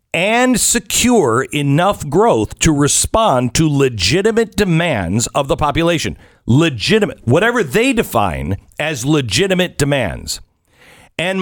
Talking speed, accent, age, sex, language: 105 wpm, American, 50-69, male, English